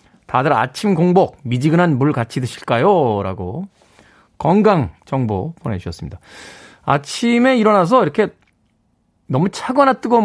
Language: Korean